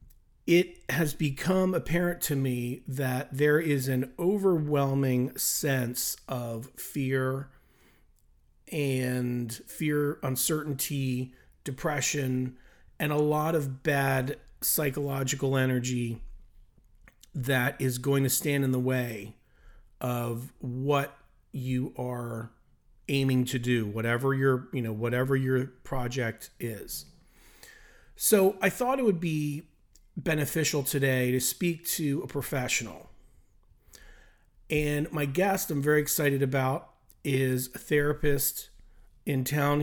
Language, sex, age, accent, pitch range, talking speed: English, male, 40-59, American, 125-150 Hz, 110 wpm